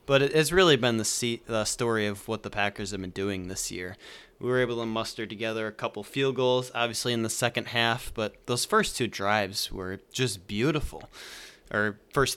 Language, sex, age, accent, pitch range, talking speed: English, male, 20-39, American, 105-125 Hz, 200 wpm